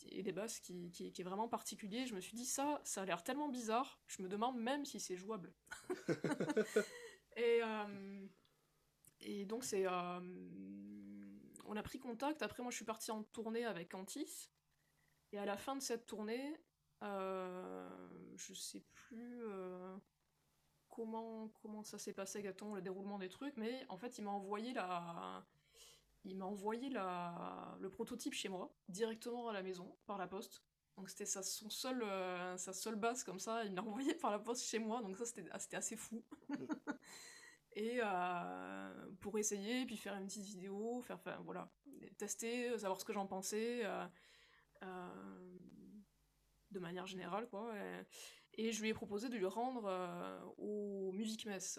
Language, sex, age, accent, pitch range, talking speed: French, female, 20-39, French, 190-235 Hz, 175 wpm